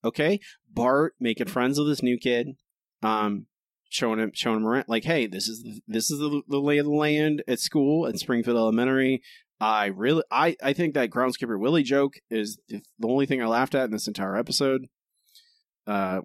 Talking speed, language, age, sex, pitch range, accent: 190 wpm, English, 20-39, male, 115-160 Hz, American